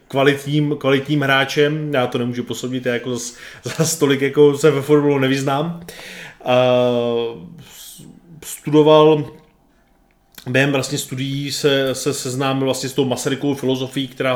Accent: native